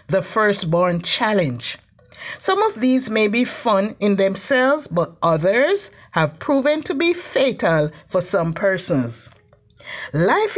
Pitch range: 175-290 Hz